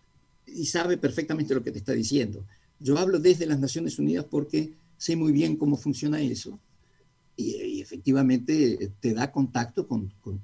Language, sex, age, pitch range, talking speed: Spanish, male, 50-69, 110-150 Hz, 165 wpm